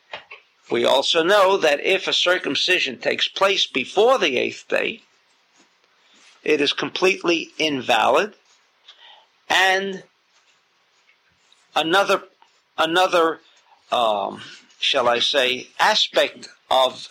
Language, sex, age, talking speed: English, male, 50-69, 90 wpm